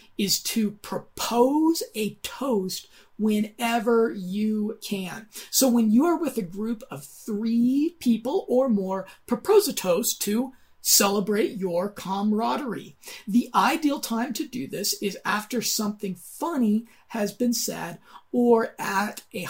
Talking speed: 130 wpm